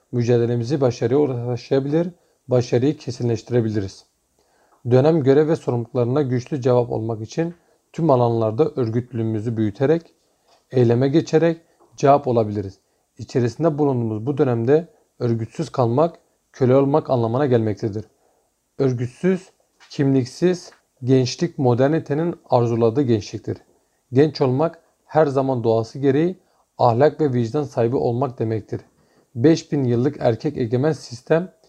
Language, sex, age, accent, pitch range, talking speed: German, male, 40-59, Turkish, 120-155 Hz, 100 wpm